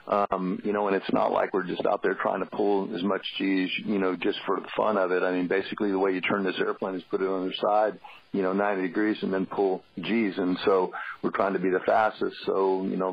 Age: 50-69